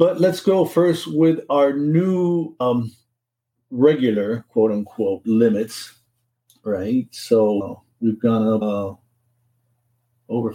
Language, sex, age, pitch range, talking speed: English, male, 50-69, 110-130 Hz, 100 wpm